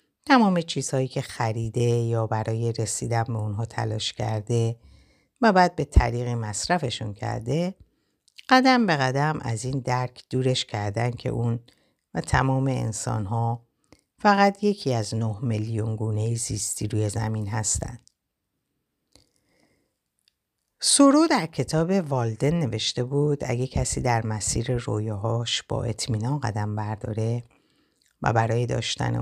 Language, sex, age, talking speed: Persian, female, 60-79, 120 wpm